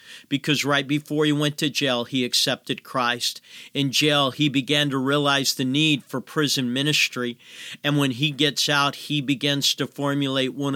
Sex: male